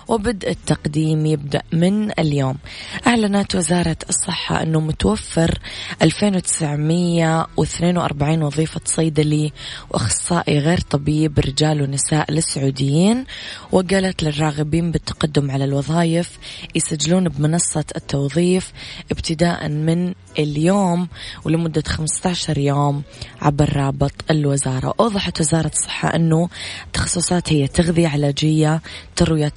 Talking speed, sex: 90 wpm, female